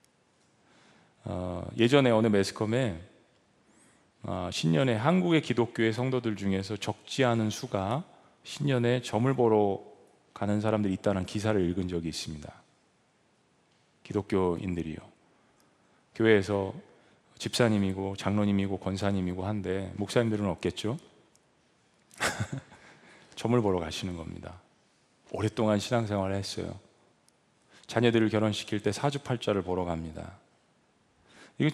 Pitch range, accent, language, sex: 95-120 Hz, native, Korean, male